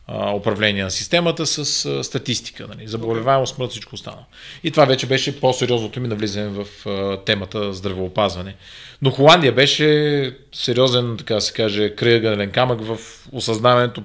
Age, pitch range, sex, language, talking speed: 30-49, 105-130 Hz, male, Bulgarian, 130 wpm